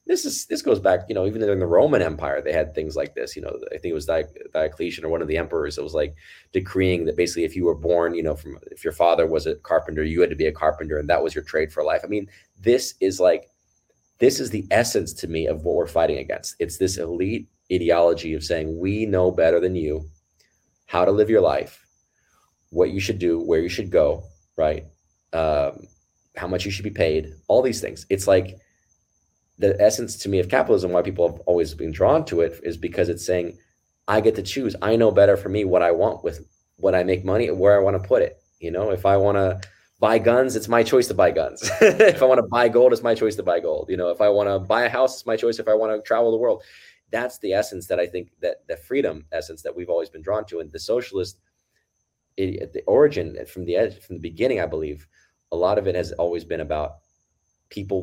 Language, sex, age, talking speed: English, male, 30-49, 250 wpm